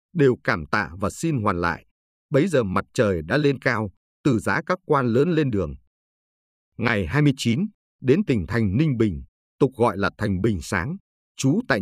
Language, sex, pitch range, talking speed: Vietnamese, male, 90-140 Hz, 185 wpm